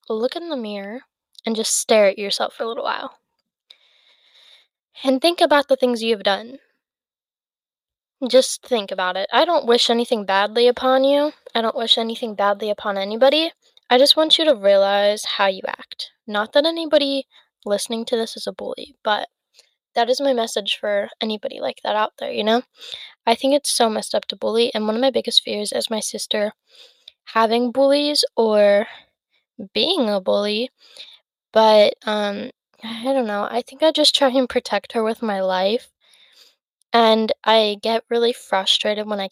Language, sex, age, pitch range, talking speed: English, female, 10-29, 210-265 Hz, 175 wpm